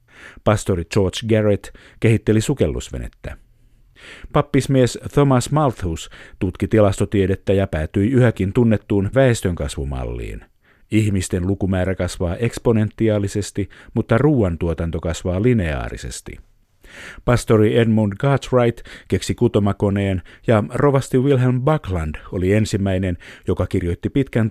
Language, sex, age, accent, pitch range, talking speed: Finnish, male, 50-69, native, 90-115 Hz, 90 wpm